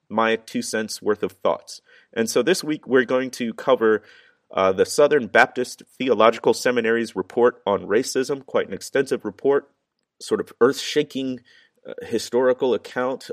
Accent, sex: American, male